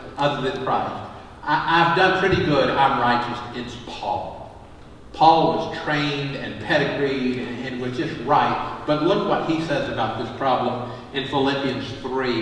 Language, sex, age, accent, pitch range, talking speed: English, male, 50-69, American, 130-165 Hz, 155 wpm